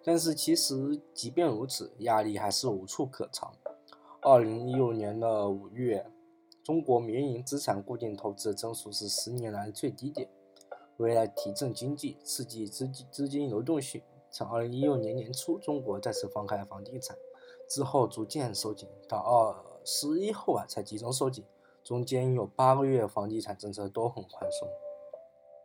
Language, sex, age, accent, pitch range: English, male, 20-39, Chinese, 105-145 Hz